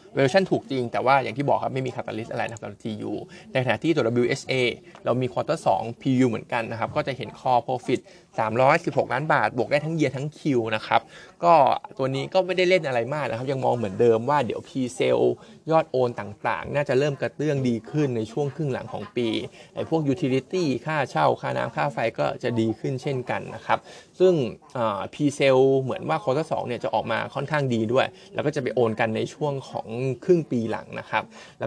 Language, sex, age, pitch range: Thai, male, 20-39, 115-145 Hz